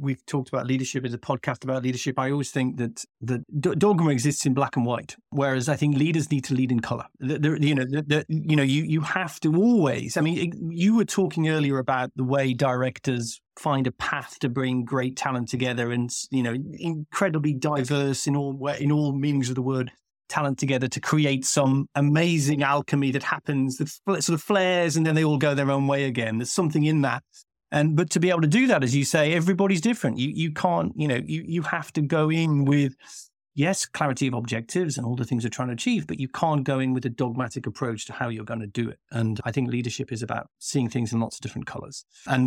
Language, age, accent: English, 30-49, British